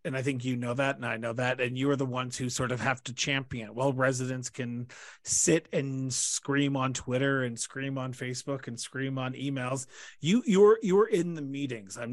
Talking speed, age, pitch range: 225 wpm, 30-49, 125-145 Hz